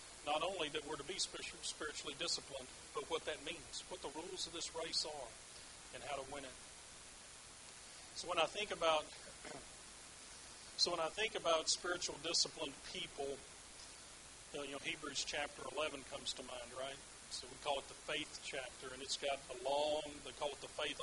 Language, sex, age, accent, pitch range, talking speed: English, male, 40-59, American, 135-165 Hz, 180 wpm